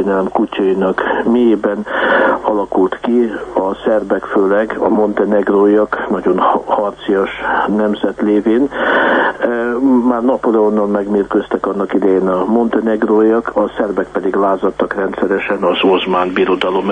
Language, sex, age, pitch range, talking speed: Hungarian, male, 60-79, 100-120 Hz, 105 wpm